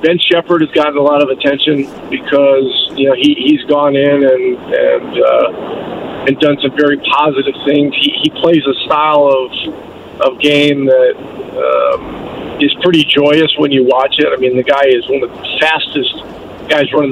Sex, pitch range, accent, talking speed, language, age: male, 140-165 Hz, American, 180 wpm, English, 50-69